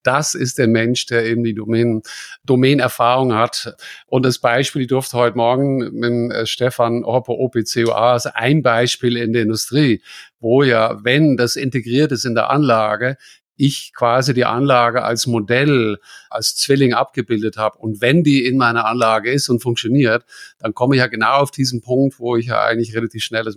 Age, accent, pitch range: 50-69, German, 120-140 Hz